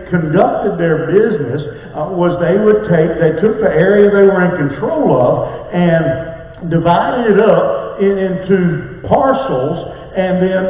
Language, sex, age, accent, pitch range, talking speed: English, male, 50-69, American, 160-200 Hz, 145 wpm